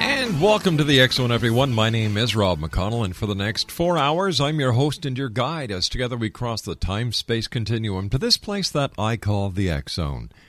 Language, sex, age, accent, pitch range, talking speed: English, male, 50-69, American, 95-135 Hz, 215 wpm